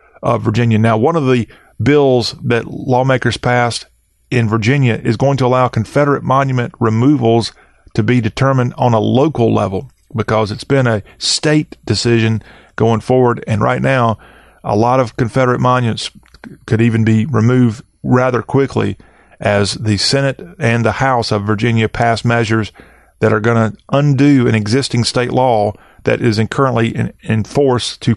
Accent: American